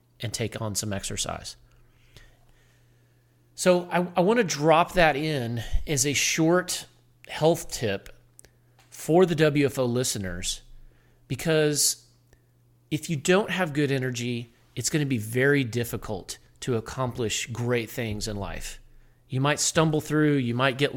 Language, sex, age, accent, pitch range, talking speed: English, male, 40-59, American, 120-150 Hz, 135 wpm